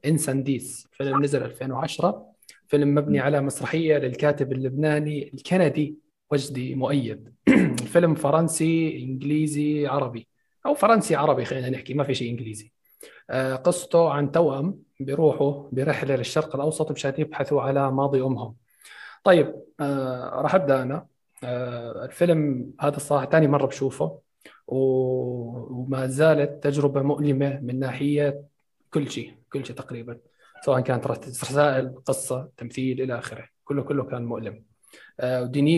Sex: male